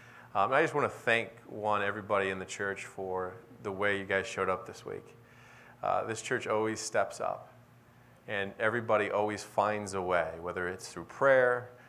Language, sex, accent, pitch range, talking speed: English, male, American, 100-120 Hz, 180 wpm